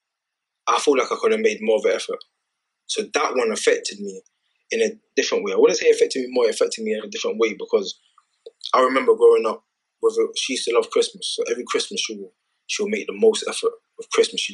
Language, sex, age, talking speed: English, male, 20-39, 240 wpm